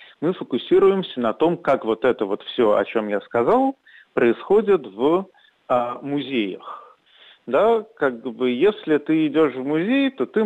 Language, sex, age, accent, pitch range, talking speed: Russian, male, 40-59, native, 125-190 Hz, 155 wpm